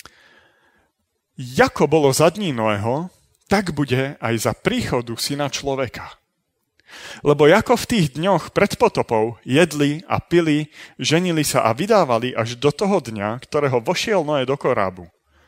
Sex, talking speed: male, 135 wpm